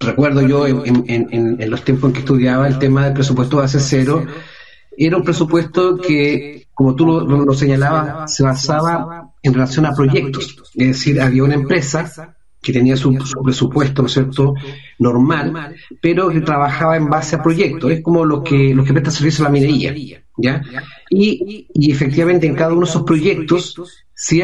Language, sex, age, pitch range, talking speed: Spanish, male, 40-59, 135-165 Hz, 185 wpm